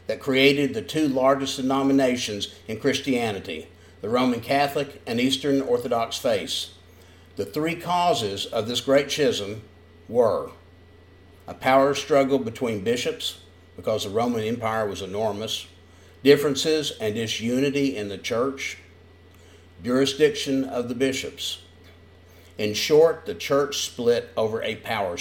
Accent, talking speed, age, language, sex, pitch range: American, 125 wpm, 50-69, English, male, 90-130 Hz